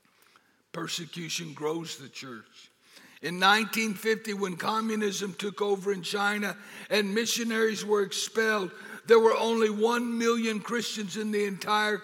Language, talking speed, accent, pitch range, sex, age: English, 125 wpm, American, 195-225 Hz, male, 60-79